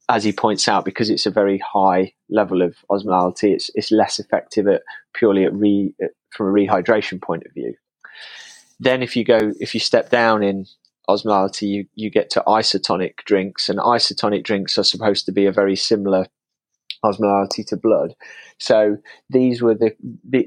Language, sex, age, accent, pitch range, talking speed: English, male, 20-39, British, 95-110 Hz, 180 wpm